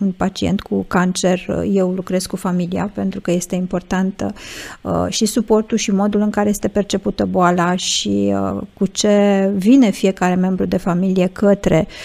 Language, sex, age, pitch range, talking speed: Romanian, female, 50-69, 175-210 Hz, 160 wpm